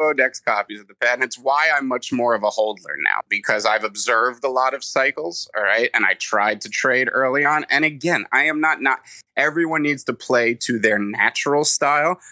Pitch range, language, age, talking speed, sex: 110-140 Hz, English, 30-49, 220 wpm, male